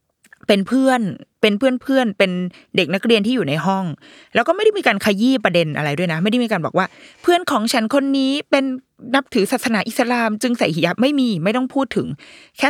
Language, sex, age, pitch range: Thai, female, 20-39, 165-235 Hz